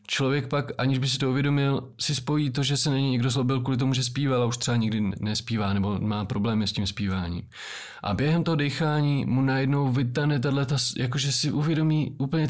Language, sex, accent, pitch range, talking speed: Czech, male, native, 115-135 Hz, 205 wpm